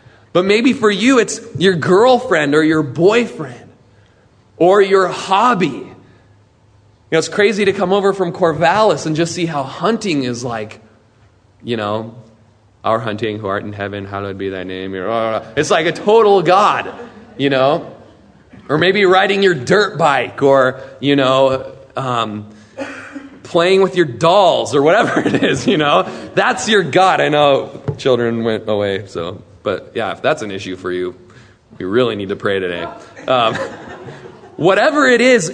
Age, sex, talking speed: 30-49, male, 160 wpm